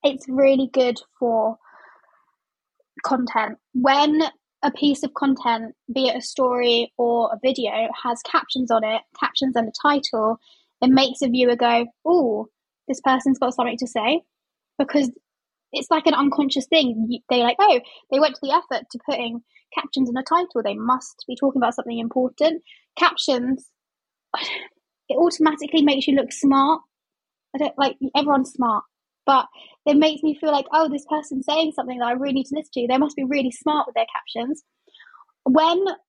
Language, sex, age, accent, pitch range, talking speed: English, female, 20-39, British, 250-305 Hz, 170 wpm